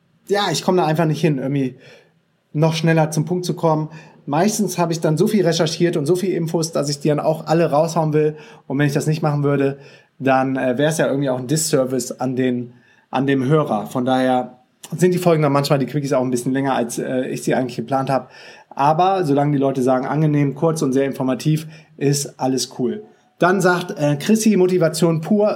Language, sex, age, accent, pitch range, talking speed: German, male, 30-49, German, 140-170 Hz, 220 wpm